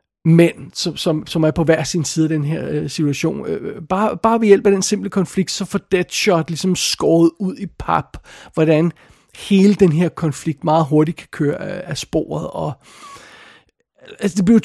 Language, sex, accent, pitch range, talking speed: Danish, male, native, 150-190 Hz, 185 wpm